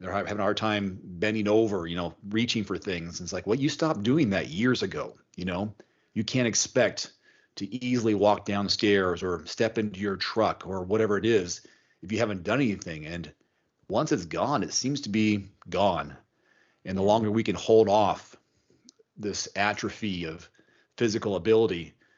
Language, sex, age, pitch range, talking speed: English, male, 40-59, 95-115 Hz, 175 wpm